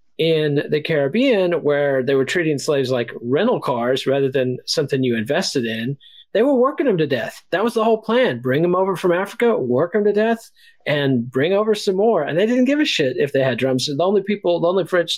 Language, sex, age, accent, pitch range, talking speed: English, male, 40-59, American, 130-175 Hz, 235 wpm